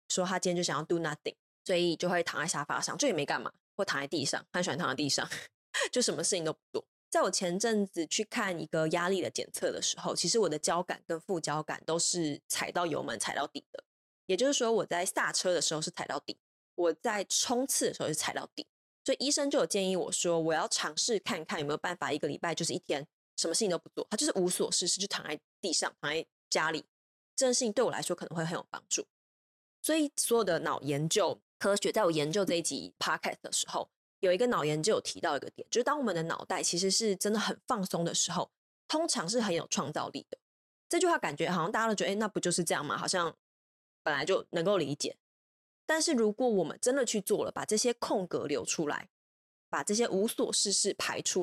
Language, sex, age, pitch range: Chinese, female, 20-39, 170-230 Hz